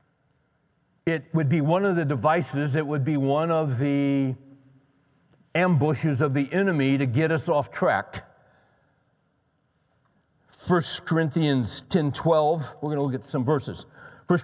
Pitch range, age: 130-160 Hz, 60-79